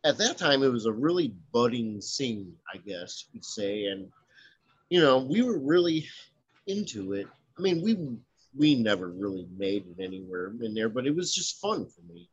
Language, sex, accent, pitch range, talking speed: English, male, American, 105-140 Hz, 190 wpm